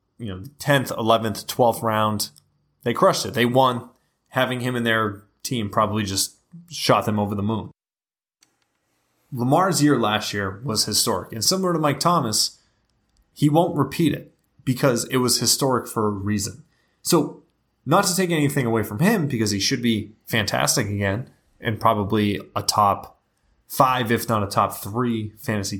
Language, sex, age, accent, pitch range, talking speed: English, male, 20-39, American, 105-130 Hz, 165 wpm